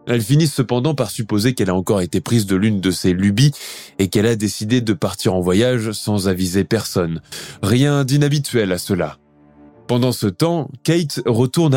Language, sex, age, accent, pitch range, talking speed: French, male, 20-39, French, 100-140 Hz, 180 wpm